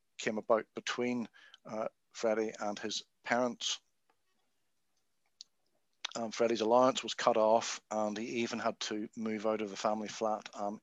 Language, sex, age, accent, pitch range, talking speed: English, male, 50-69, British, 110-120 Hz, 145 wpm